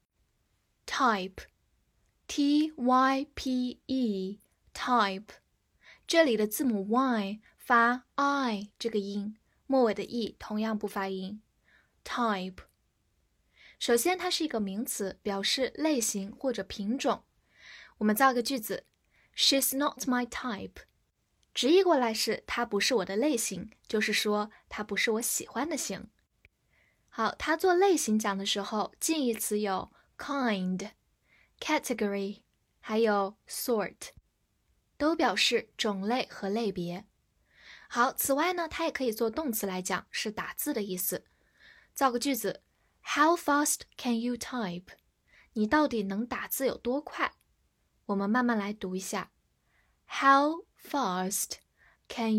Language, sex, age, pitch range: Chinese, female, 10-29, 205-275 Hz